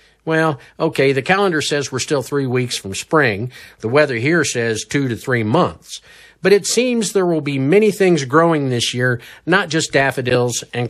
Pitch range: 125-165 Hz